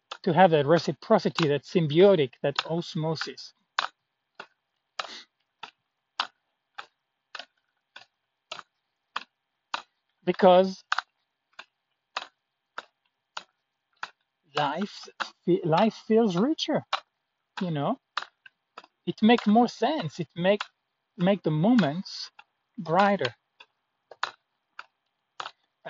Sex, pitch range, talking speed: male, 160-210 Hz, 60 wpm